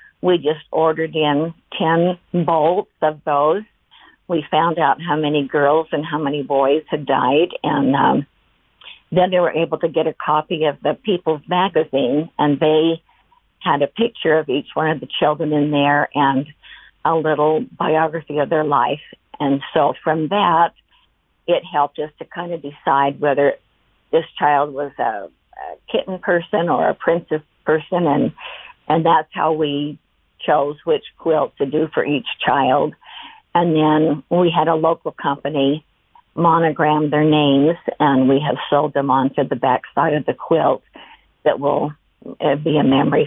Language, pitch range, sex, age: English, 145-170 Hz, female, 50-69